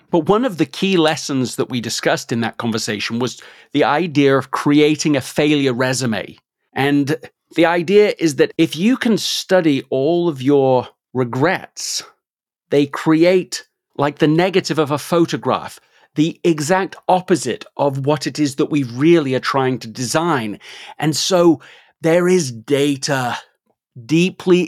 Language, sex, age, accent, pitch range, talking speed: English, male, 40-59, British, 135-170 Hz, 150 wpm